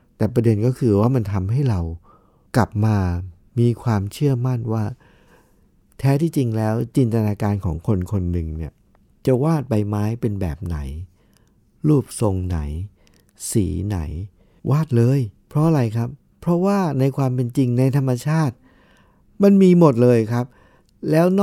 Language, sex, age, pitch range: Thai, male, 60-79, 100-140 Hz